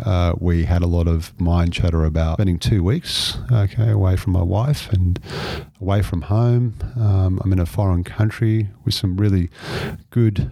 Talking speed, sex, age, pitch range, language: 175 wpm, male, 40-59, 85-105 Hz, English